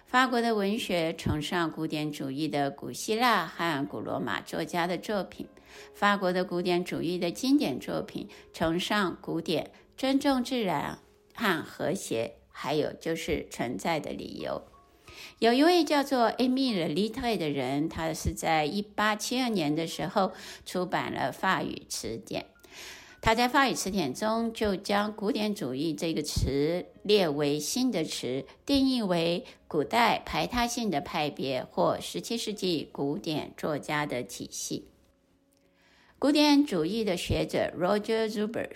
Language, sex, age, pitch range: Chinese, female, 60-79, 160-235 Hz